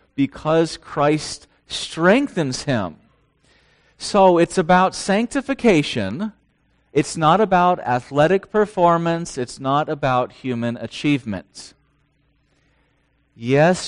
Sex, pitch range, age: male, 130-185 Hz, 40-59